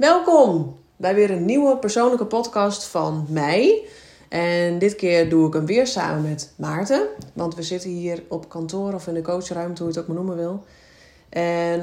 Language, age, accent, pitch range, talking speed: Dutch, 30-49, Dutch, 165-185 Hz, 190 wpm